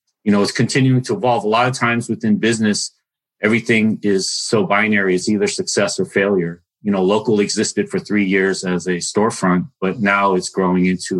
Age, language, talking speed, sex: 40-59, English, 195 wpm, male